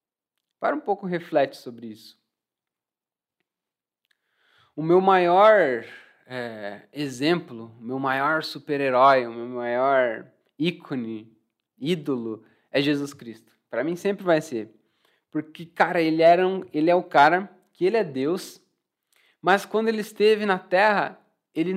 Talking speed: 130 wpm